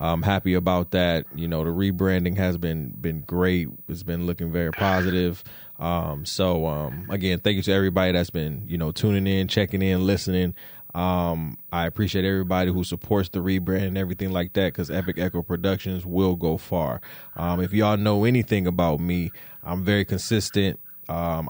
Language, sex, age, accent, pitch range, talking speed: English, male, 20-39, American, 85-105 Hz, 180 wpm